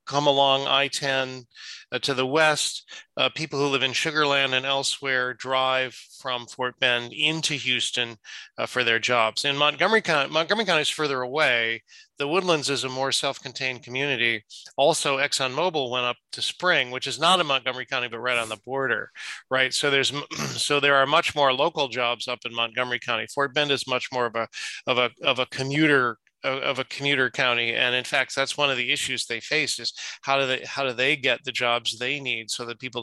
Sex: male